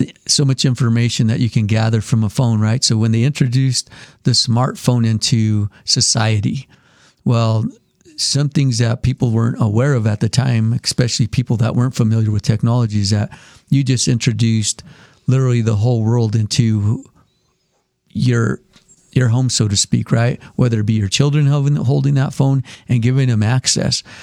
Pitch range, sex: 110-130 Hz, male